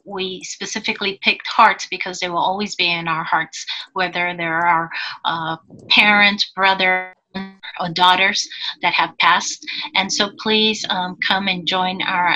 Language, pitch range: English, 180-210 Hz